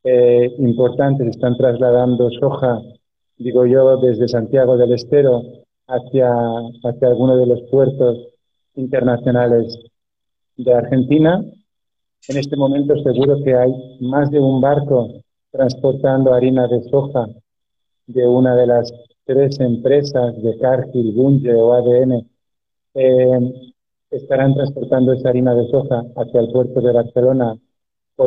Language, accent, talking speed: Spanish, Spanish, 125 wpm